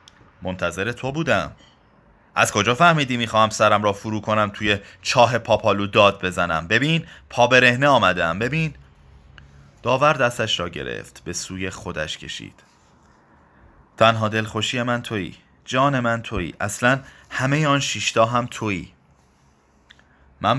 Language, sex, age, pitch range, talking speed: Persian, male, 30-49, 90-130 Hz, 120 wpm